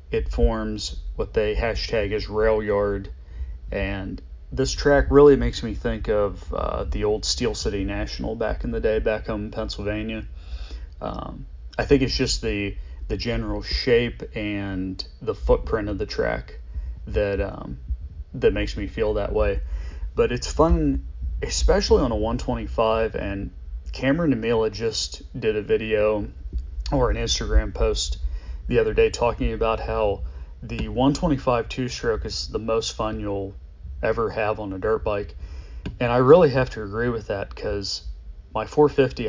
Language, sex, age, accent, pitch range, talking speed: English, male, 30-49, American, 70-115 Hz, 160 wpm